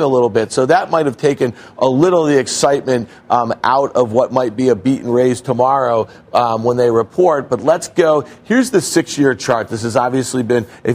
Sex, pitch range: male, 120-145 Hz